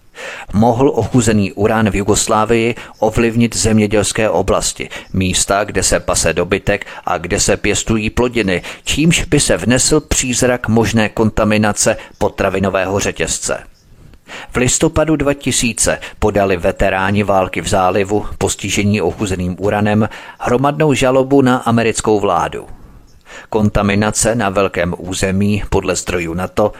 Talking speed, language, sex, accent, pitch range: 115 wpm, Czech, male, native, 95-115 Hz